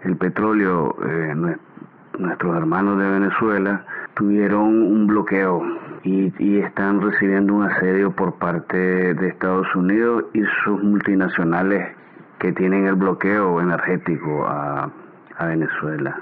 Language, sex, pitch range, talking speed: Spanish, male, 95-115 Hz, 120 wpm